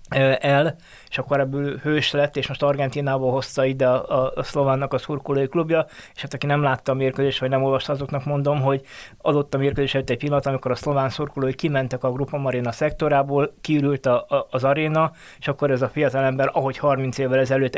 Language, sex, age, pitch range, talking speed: Hungarian, male, 20-39, 135-150 Hz, 190 wpm